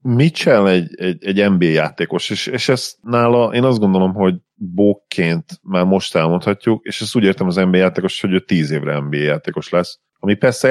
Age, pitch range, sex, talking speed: 40-59, 85-95 Hz, male, 190 wpm